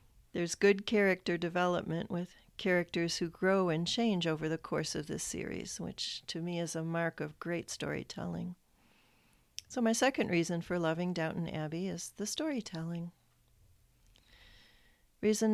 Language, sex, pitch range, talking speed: English, female, 160-195 Hz, 145 wpm